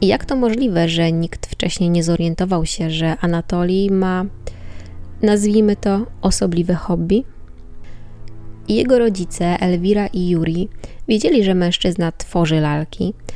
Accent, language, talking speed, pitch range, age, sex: native, Polish, 115 wpm, 170-225 Hz, 20-39, female